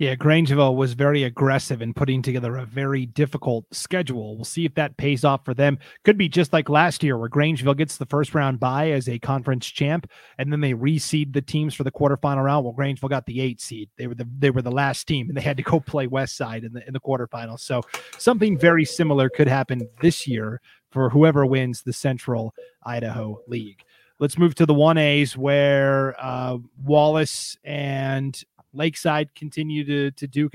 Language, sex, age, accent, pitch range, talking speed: English, male, 30-49, American, 130-155 Hz, 200 wpm